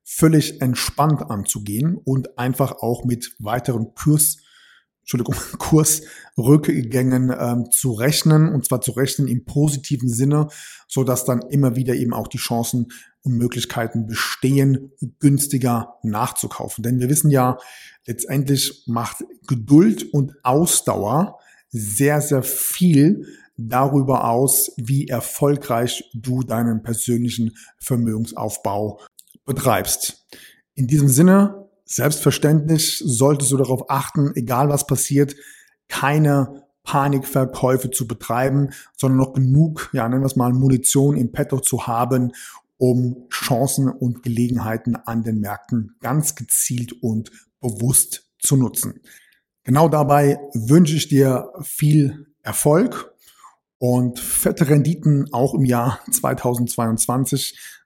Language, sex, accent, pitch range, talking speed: German, male, German, 120-145 Hz, 115 wpm